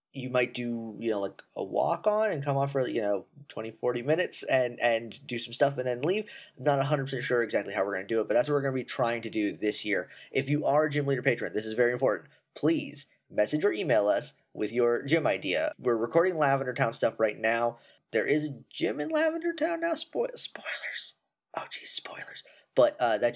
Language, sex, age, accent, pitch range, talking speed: English, male, 20-39, American, 110-145 Hz, 235 wpm